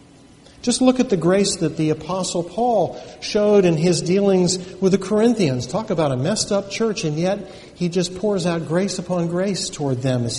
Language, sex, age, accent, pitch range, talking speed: English, male, 50-69, American, 145-190 Hz, 195 wpm